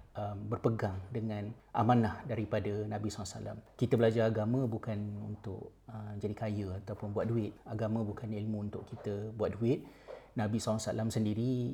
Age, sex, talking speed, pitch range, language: 30-49, male, 145 wpm, 105-120 Hz, Malay